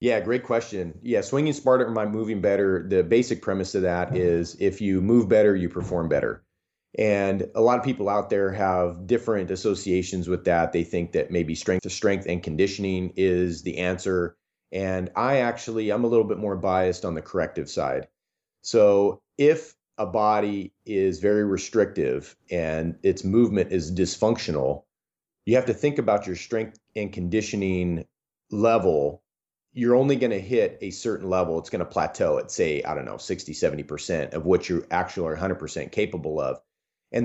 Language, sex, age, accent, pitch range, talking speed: English, male, 30-49, American, 90-115 Hz, 175 wpm